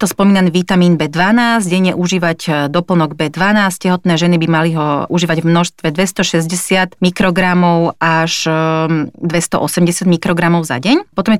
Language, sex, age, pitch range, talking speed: Slovak, female, 30-49, 165-190 Hz, 130 wpm